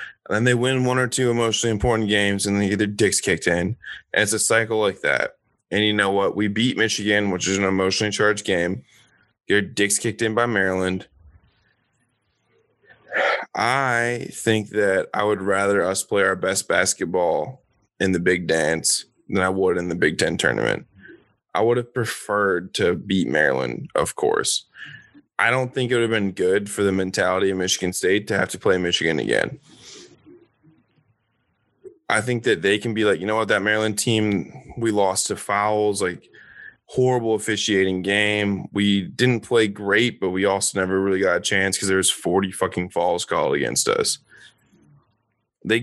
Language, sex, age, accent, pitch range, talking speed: English, male, 20-39, American, 95-115 Hz, 180 wpm